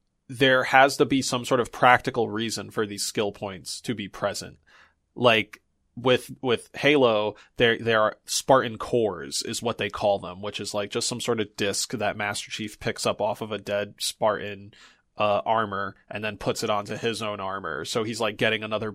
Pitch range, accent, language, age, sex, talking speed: 105-130 Hz, American, English, 20-39, male, 200 wpm